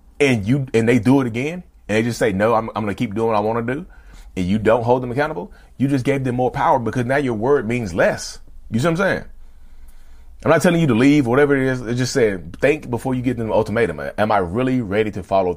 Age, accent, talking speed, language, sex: 30-49, American, 280 wpm, English, male